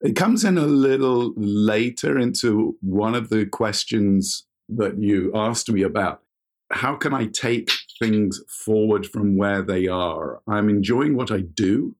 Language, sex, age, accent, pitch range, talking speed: English, male, 50-69, British, 100-120 Hz, 155 wpm